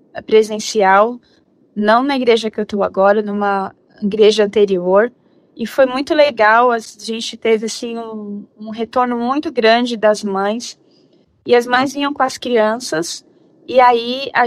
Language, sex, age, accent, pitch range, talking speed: Portuguese, female, 20-39, Brazilian, 210-245 Hz, 150 wpm